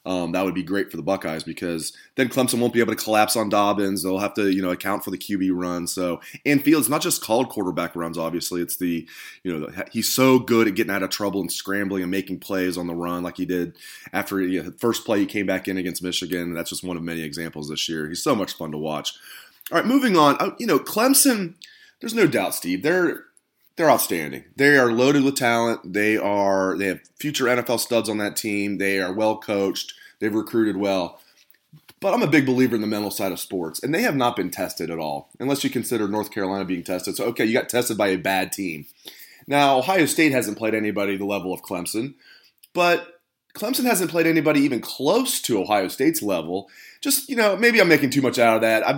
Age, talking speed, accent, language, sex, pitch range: 30-49, 235 wpm, American, English, male, 90-130 Hz